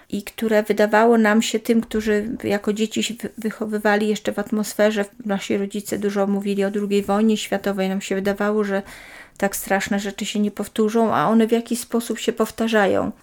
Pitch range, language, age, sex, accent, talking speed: 200-235 Hz, Polish, 40-59, female, native, 175 wpm